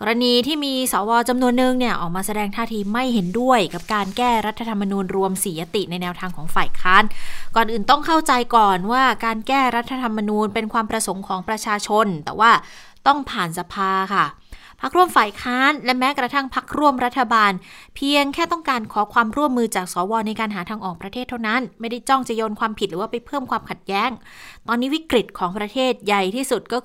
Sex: female